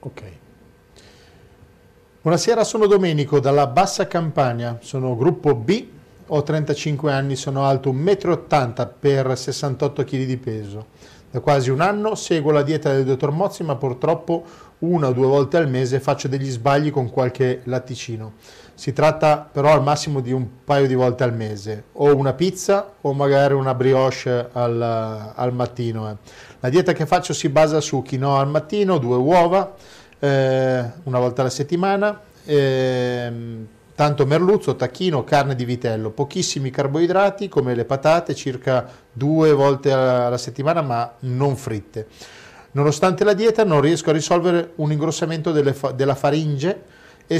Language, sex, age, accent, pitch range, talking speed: Italian, male, 40-59, native, 125-160 Hz, 150 wpm